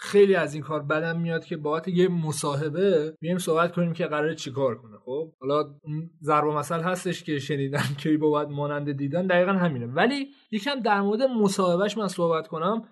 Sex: male